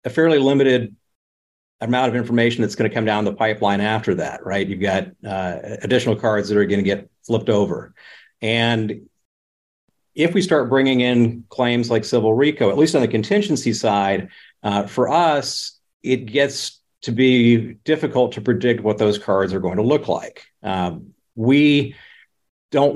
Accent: American